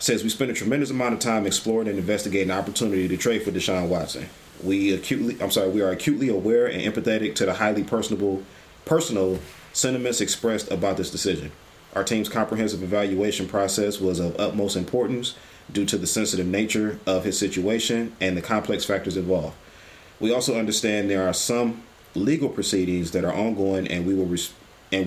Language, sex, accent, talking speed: English, male, American, 180 wpm